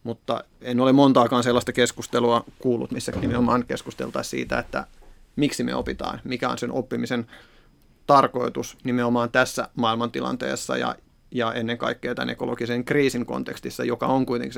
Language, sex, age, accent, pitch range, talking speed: Finnish, male, 30-49, native, 120-125 Hz, 140 wpm